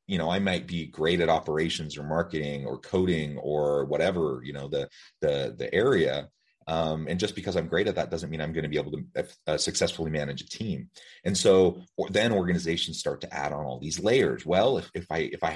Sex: male